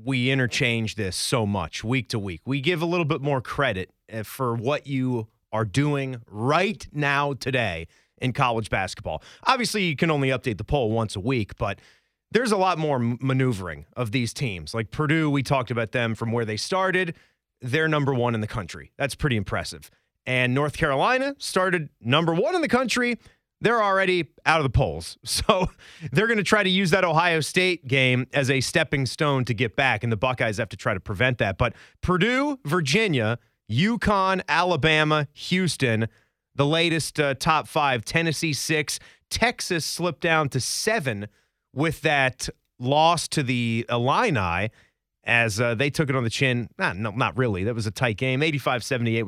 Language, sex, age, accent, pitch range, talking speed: English, male, 30-49, American, 115-160 Hz, 180 wpm